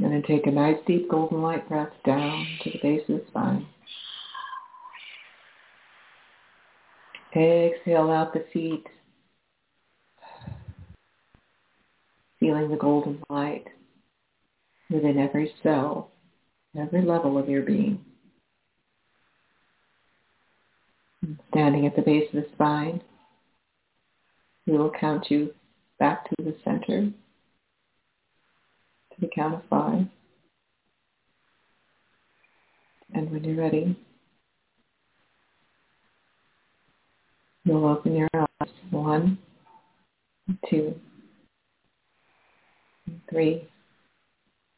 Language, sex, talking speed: English, female, 85 wpm